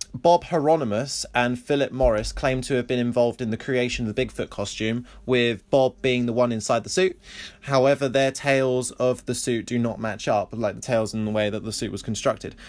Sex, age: male, 20-39